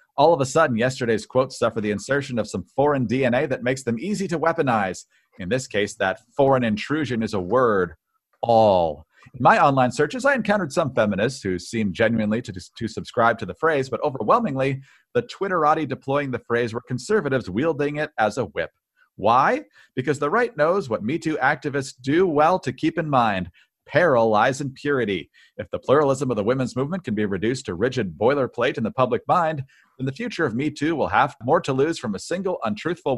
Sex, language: male, English